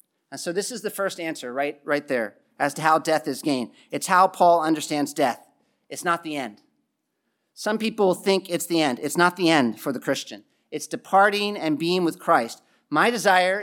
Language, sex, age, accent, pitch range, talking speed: English, male, 40-59, American, 160-210 Hz, 205 wpm